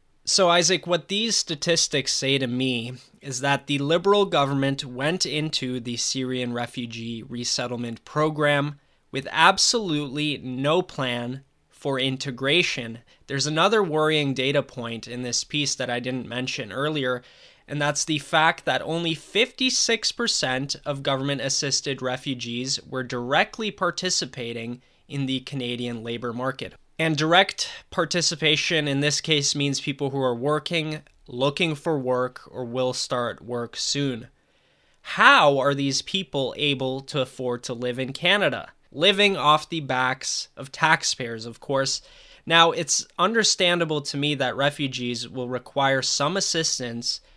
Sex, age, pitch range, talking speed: male, 20-39, 125-165 Hz, 135 wpm